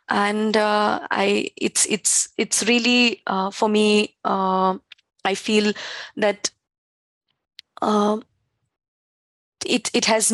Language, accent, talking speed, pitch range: English, Indian, 105 wpm, 195-230 Hz